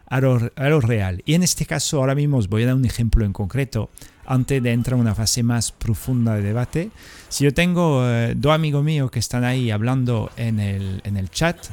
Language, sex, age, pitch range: Spanish, male, 40-59, 110-150 Hz